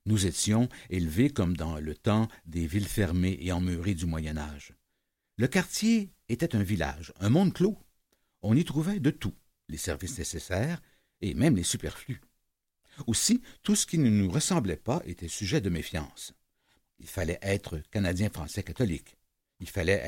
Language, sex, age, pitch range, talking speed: French, male, 60-79, 85-125 Hz, 155 wpm